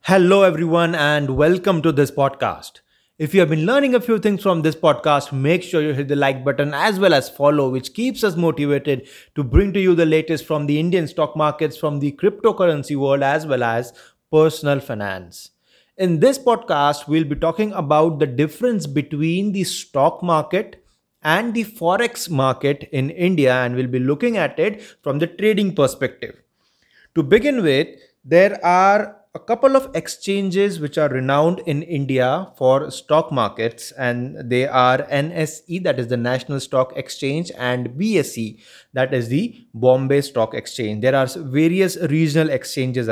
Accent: Indian